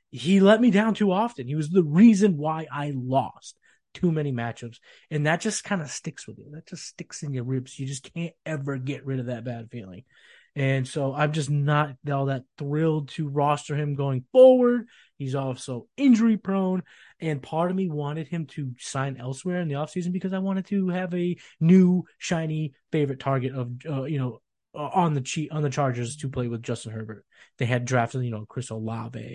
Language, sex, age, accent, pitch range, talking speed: English, male, 20-39, American, 125-160 Hz, 205 wpm